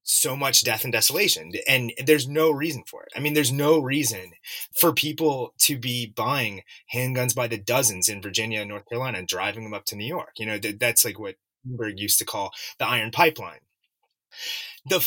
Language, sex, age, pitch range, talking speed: English, male, 30-49, 120-165 Hz, 200 wpm